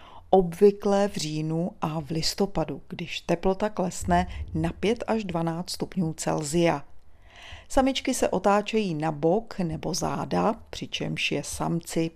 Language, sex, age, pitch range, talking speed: Czech, female, 40-59, 165-205 Hz, 125 wpm